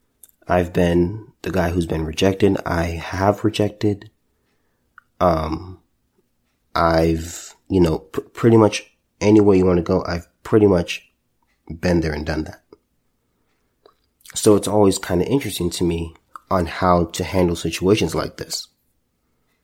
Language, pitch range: English, 80-95 Hz